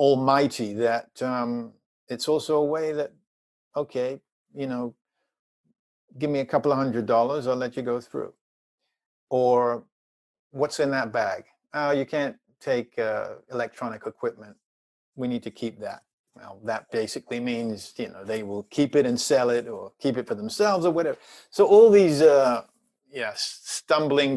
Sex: male